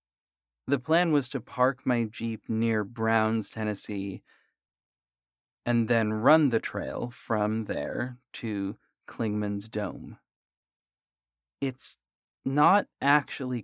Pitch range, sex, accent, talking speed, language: 105-130 Hz, male, American, 100 wpm, English